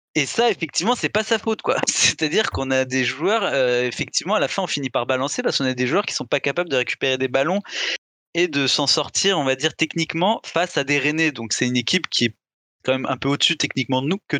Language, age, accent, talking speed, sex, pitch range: French, 20-39, French, 260 wpm, male, 130-165 Hz